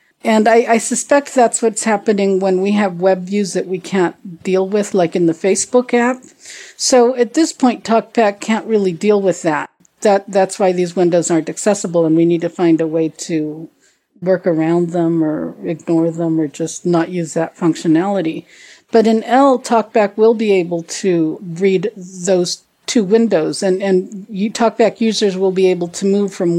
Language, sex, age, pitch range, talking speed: English, female, 50-69, 175-230 Hz, 185 wpm